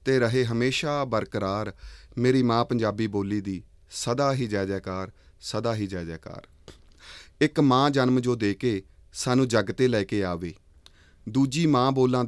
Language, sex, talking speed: Punjabi, male, 145 wpm